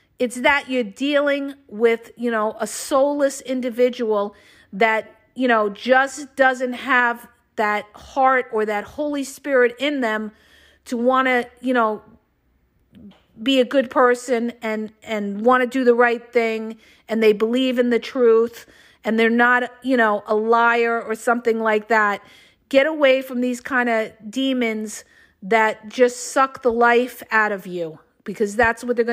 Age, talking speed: 50-69, 160 wpm